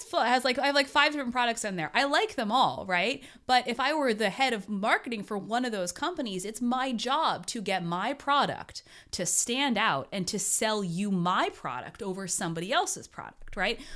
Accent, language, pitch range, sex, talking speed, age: American, English, 180-265 Hz, female, 215 wpm, 20-39